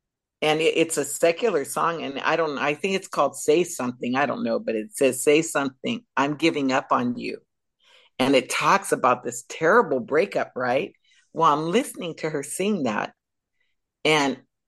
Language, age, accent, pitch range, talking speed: English, 50-69, American, 155-250 Hz, 180 wpm